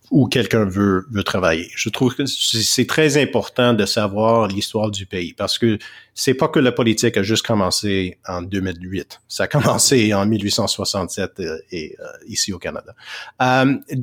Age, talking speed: 30-49, 165 wpm